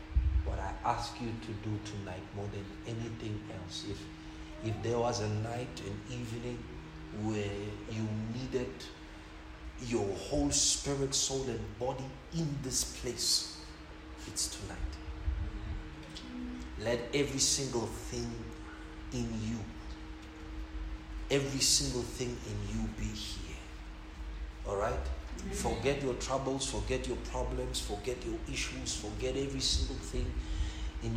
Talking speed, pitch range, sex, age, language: 120 wpm, 80-115 Hz, male, 50-69, English